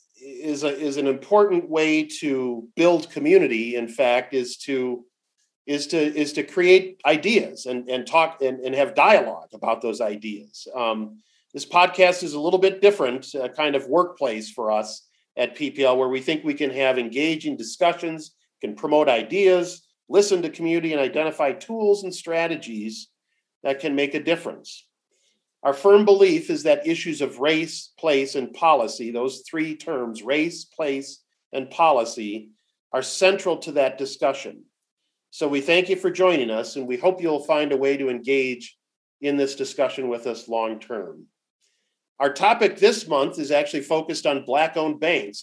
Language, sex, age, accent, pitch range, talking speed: English, male, 50-69, American, 130-170 Hz, 165 wpm